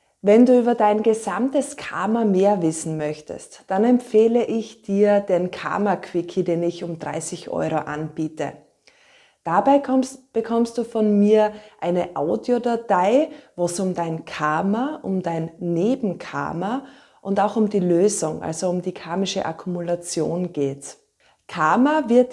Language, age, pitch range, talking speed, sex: German, 20-39, 175-225 Hz, 135 wpm, female